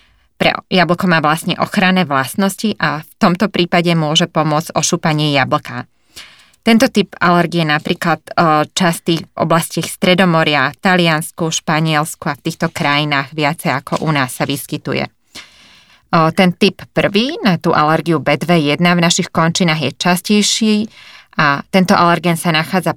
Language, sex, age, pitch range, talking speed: Slovak, female, 20-39, 150-175 Hz, 140 wpm